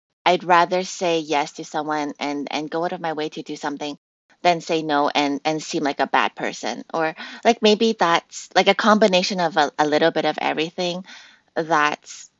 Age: 20-39